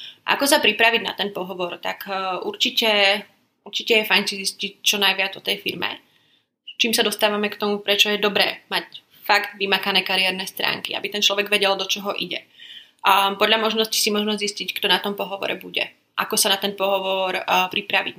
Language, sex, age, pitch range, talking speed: Slovak, female, 20-39, 195-215 Hz, 180 wpm